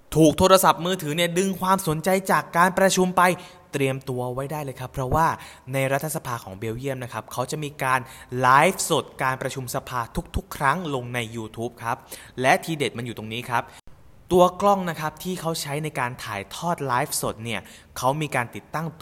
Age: 20-39